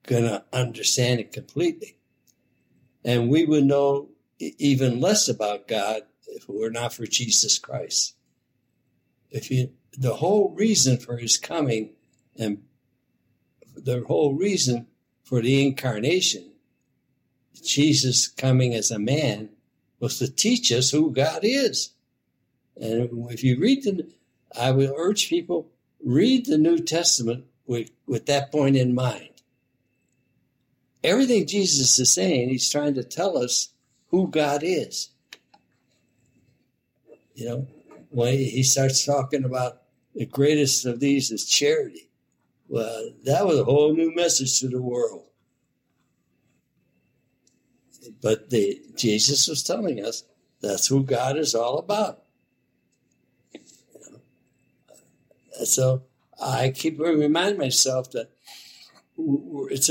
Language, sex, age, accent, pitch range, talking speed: English, male, 60-79, American, 125-155 Hz, 120 wpm